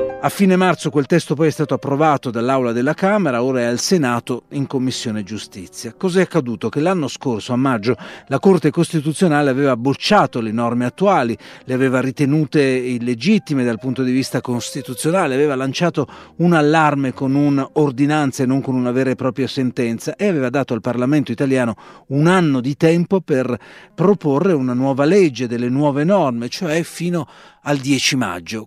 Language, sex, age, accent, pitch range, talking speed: Italian, male, 40-59, native, 125-160 Hz, 170 wpm